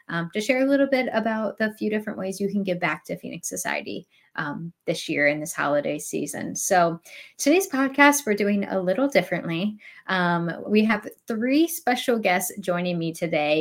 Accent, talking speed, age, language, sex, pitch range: American, 185 wpm, 10-29, English, female, 170-210 Hz